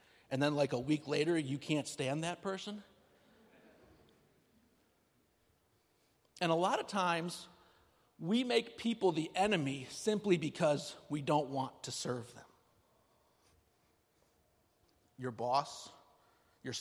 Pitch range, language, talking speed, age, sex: 130-175 Hz, English, 115 wpm, 50-69, male